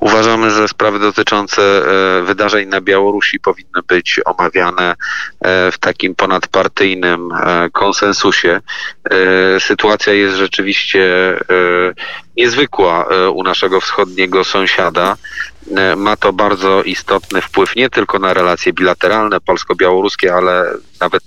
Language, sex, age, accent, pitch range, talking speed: Polish, male, 40-59, native, 90-105 Hz, 100 wpm